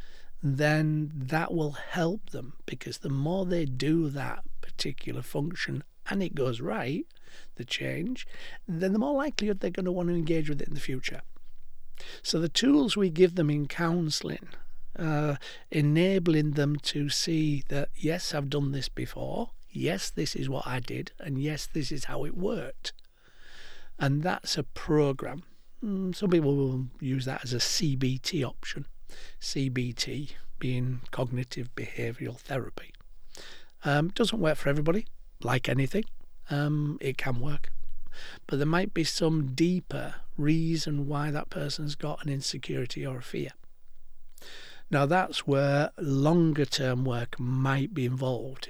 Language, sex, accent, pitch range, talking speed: English, male, British, 135-165 Hz, 145 wpm